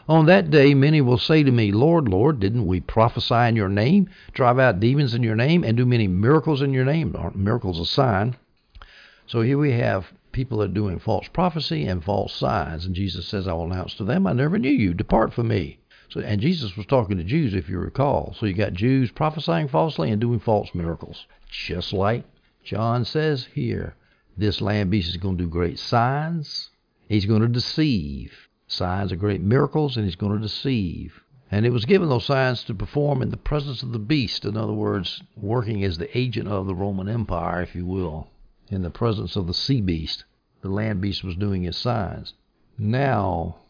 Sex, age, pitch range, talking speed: male, 60-79, 100-130 Hz, 205 wpm